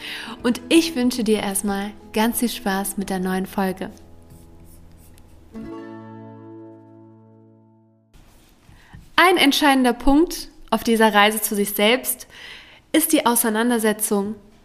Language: German